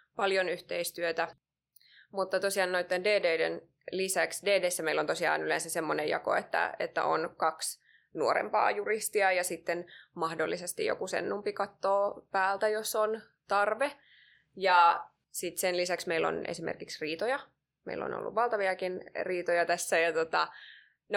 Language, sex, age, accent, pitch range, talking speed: Finnish, female, 20-39, native, 175-215 Hz, 130 wpm